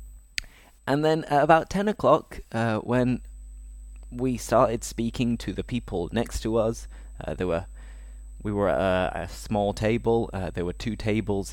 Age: 20-39